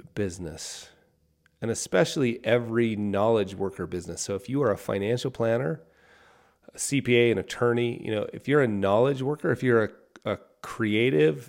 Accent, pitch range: American, 100-135 Hz